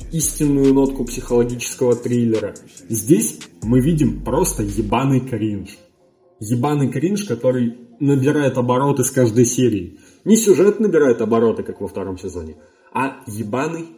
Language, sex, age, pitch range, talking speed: Russian, male, 20-39, 115-150 Hz, 120 wpm